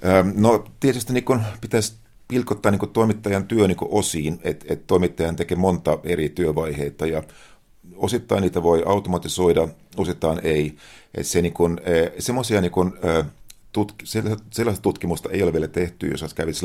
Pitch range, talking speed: 75-90 Hz, 150 wpm